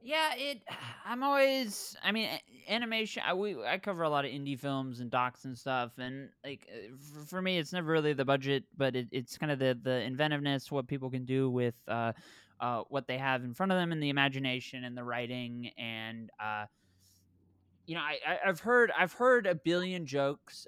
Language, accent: English, American